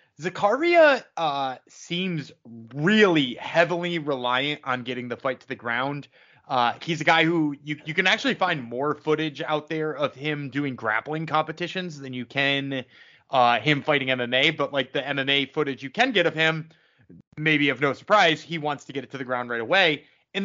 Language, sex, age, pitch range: English, male, 20-39, 145-200 Hz